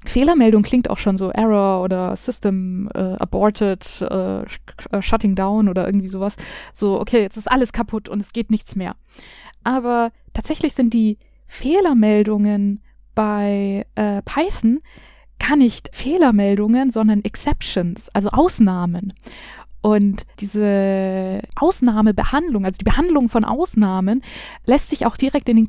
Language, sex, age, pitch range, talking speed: German, female, 20-39, 205-250 Hz, 130 wpm